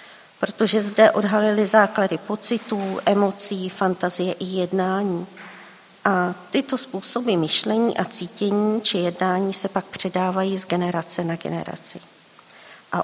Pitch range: 180-215 Hz